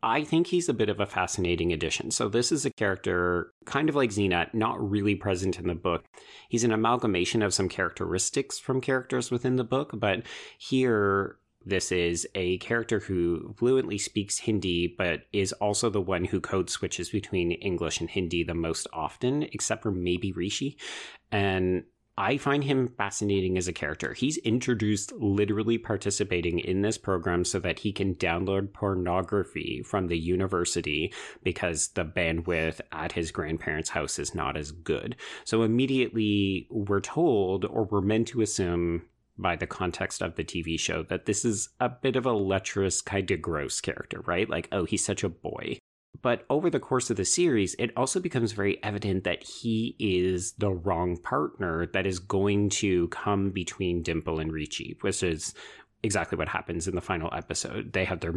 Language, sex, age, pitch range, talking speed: English, male, 30-49, 90-110 Hz, 180 wpm